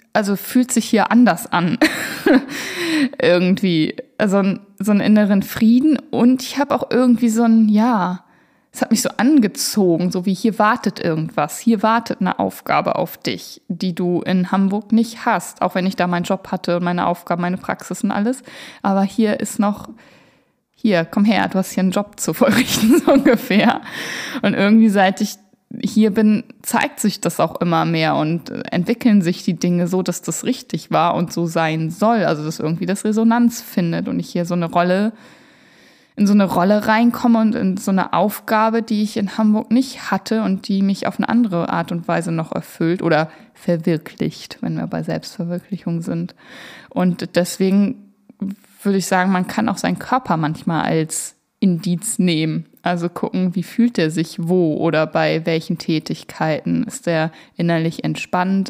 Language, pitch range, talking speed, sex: German, 175-225 Hz, 175 wpm, female